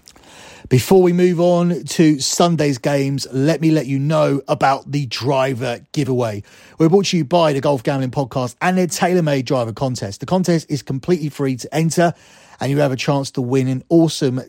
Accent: British